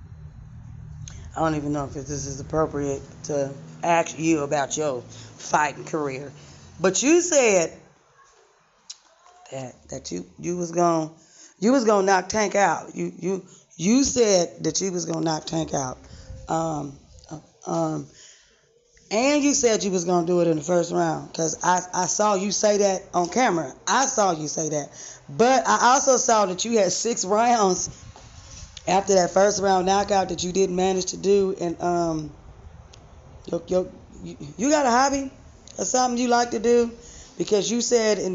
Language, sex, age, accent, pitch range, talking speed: English, female, 20-39, American, 160-205 Hz, 170 wpm